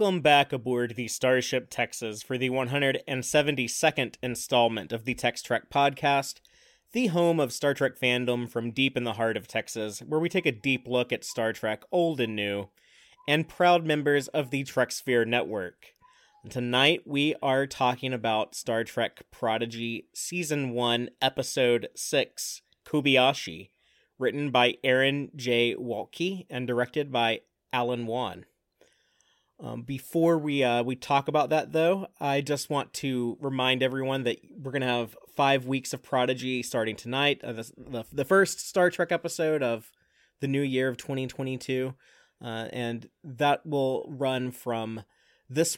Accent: American